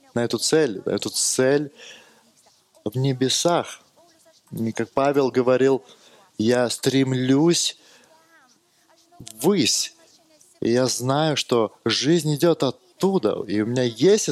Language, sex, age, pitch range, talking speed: English, male, 20-39, 115-160 Hz, 105 wpm